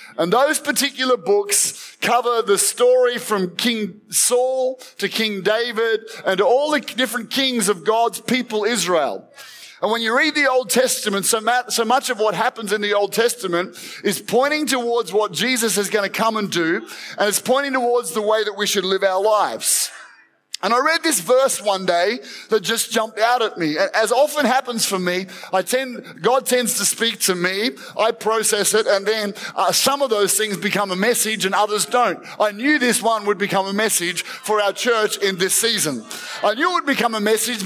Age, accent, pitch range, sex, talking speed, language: 30-49, Australian, 205-250 Hz, male, 200 wpm, English